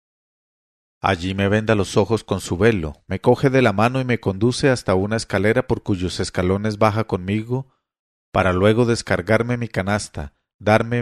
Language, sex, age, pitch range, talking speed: English, male, 40-59, 95-120 Hz, 165 wpm